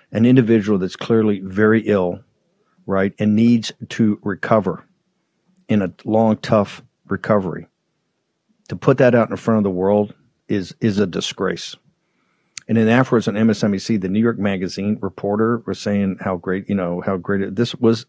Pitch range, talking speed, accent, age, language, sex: 100-120 Hz, 165 wpm, American, 50-69, English, male